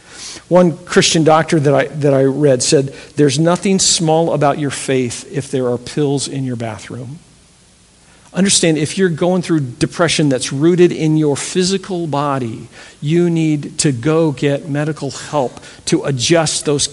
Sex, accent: male, American